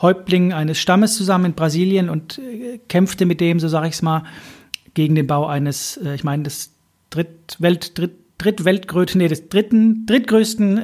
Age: 40-59